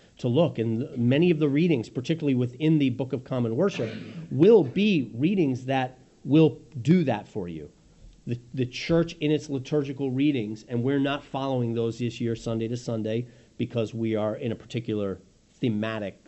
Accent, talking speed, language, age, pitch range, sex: American, 175 wpm, English, 40-59, 115-155 Hz, male